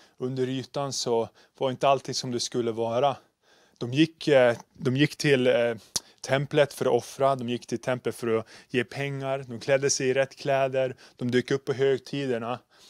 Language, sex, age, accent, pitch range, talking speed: Swedish, male, 20-39, native, 115-135 Hz, 175 wpm